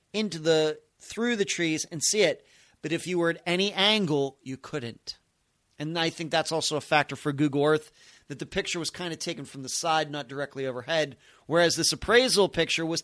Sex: male